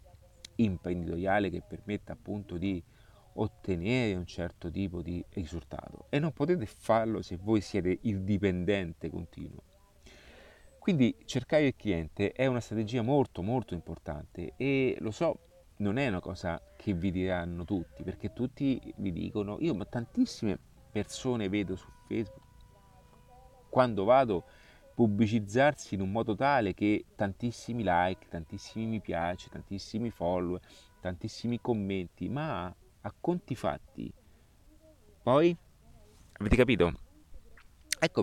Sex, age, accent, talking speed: male, 40-59, native, 120 wpm